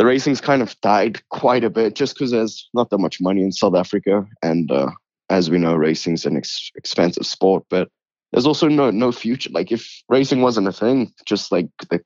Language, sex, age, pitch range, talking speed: English, male, 20-39, 90-110 Hz, 215 wpm